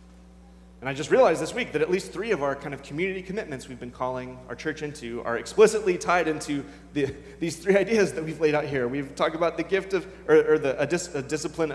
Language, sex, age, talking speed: English, male, 20-39, 245 wpm